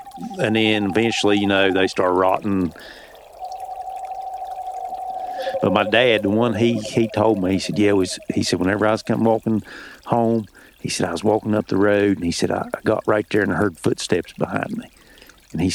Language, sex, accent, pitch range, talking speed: English, male, American, 95-120 Hz, 195 wpm